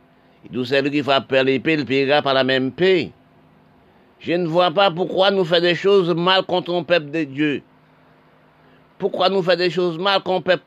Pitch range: 145-175 Hz